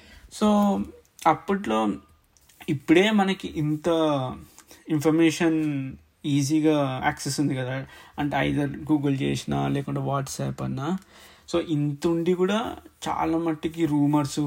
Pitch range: 140-165 Hz